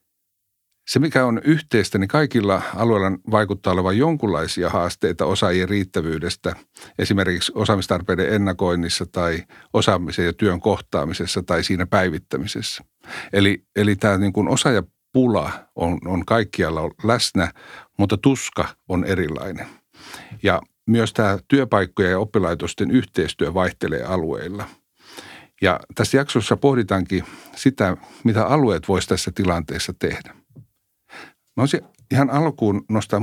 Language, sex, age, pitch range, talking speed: Finnish, male, 60-79, 90-115 Hz, 110 wpm